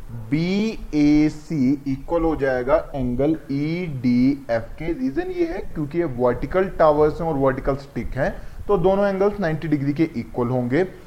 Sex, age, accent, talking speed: male, 20-39, native, 145 wpm